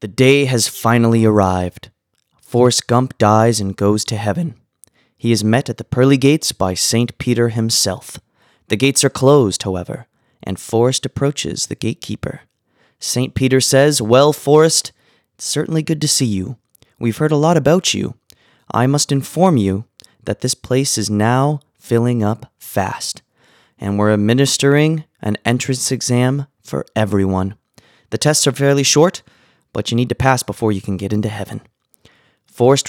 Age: 20-39